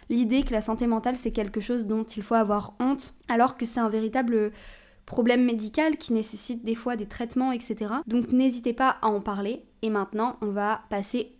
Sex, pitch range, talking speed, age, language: female, 200-240 Hz, 200 wpm, 20-39, French